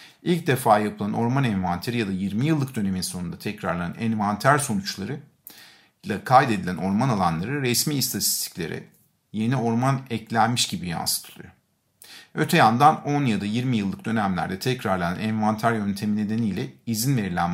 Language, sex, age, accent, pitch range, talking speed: Turkish, male, 50-69, native, 105-135 Hz, 135 wpm